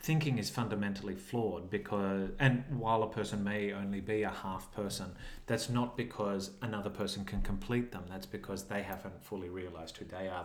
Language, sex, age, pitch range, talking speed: English, male, 30-49, 95-120 Hz, 185 wpm